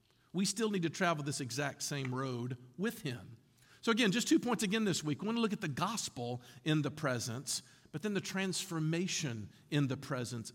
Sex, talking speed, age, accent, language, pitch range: male, 205 wpm, 50-69, American, English, 145-210 Hz